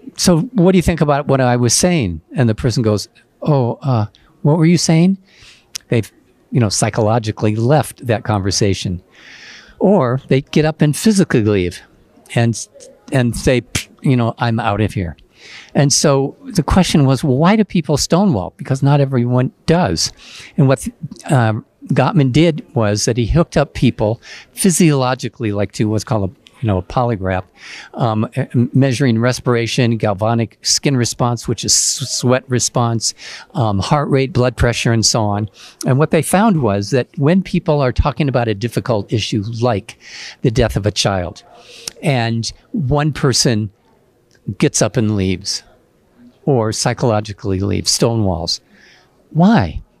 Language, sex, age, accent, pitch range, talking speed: English, male, 50-69, American, 110-145 Hz, 155 wpm